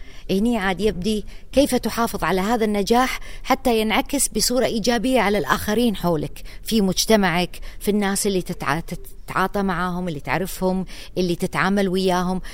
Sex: female